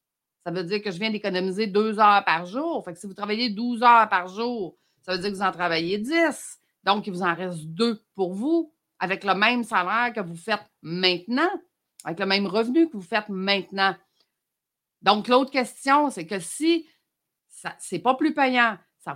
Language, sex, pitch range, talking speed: French, female, 190-250 Hz, 195 wpm